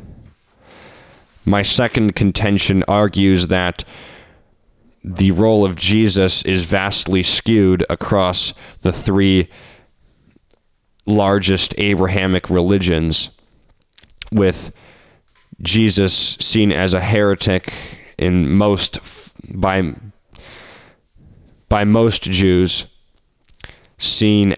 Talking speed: 75 wpm